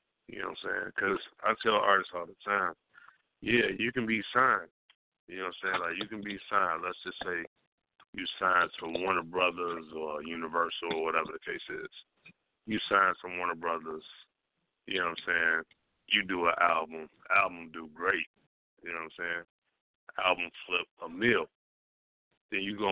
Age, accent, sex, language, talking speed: 30-49, American, male, English, 185 wpm